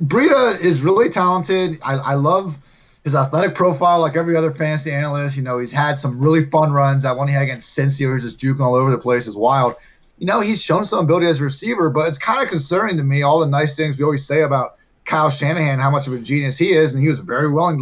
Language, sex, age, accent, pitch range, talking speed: English, male, 20-39, American, 140-165 Hz, 260 wpm